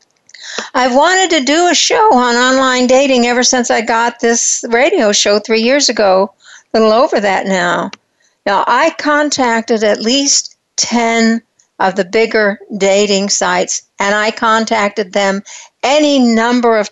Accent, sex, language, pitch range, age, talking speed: American, female, English, 205-255 Hz, 60-79, 150 wpm